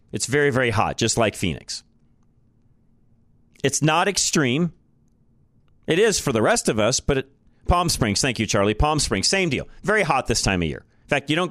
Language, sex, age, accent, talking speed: English, male, 40-59, American, 195 wpm